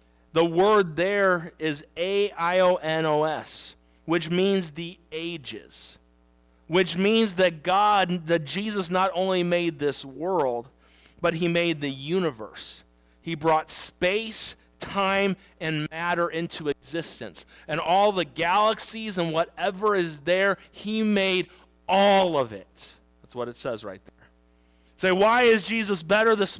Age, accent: 40-59, American